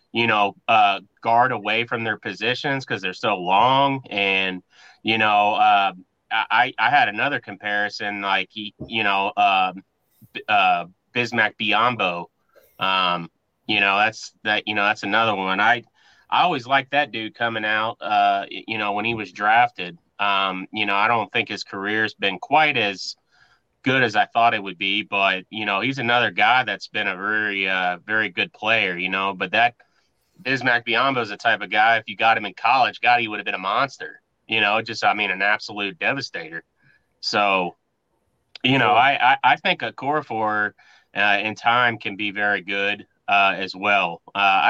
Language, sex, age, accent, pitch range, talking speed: English, male, 30-49, American, 100-115 Hz, 185 wpm